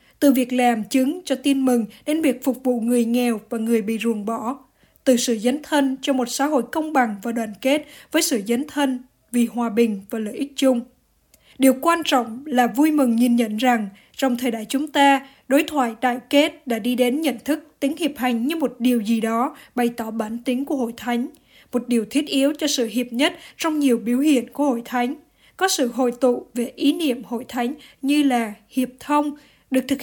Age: 20-39